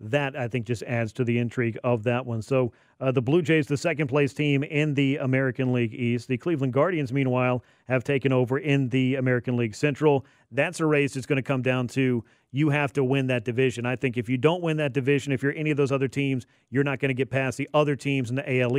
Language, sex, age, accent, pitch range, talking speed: English, male, 40-59, American, 125-150 Hz, 250 wpm